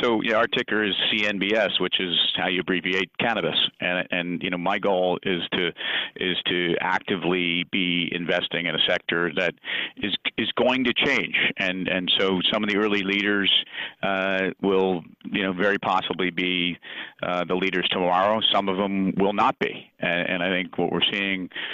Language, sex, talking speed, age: English, male, 180 wpm, 40-59